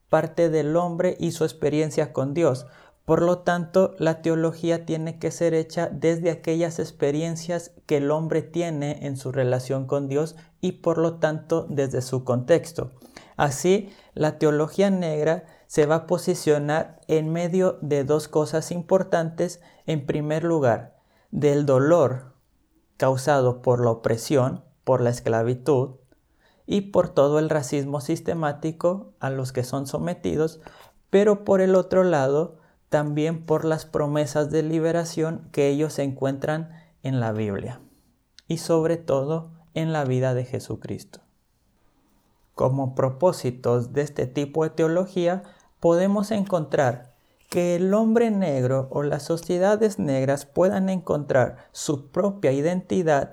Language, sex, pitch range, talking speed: Spanish, male, 140-170 Hz, 135 wpm